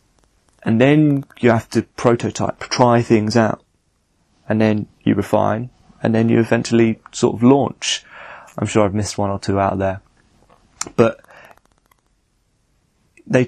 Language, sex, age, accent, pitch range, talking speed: English, male, 30-49, British, 110-130 Hz, 140 wpm